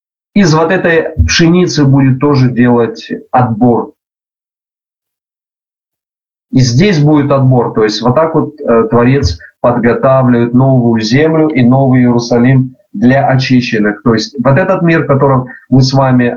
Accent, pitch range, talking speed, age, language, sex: native, 120-160 Hz, 130 wpm, 40-59, Russian, male